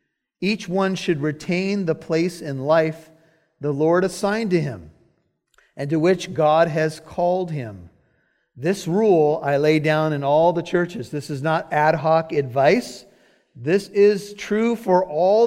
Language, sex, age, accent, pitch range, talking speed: English, male, 50-69, American, 145-190 Hz, 155 wpm